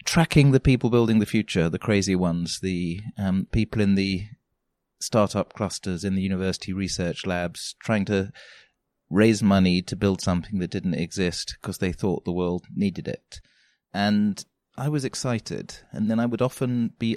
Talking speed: 170 wpm